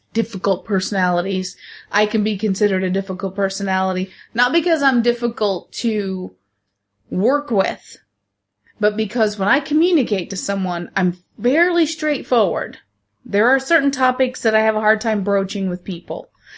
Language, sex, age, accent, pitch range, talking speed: English, female, 30-49, American, 185-235 Hz, 140 wpm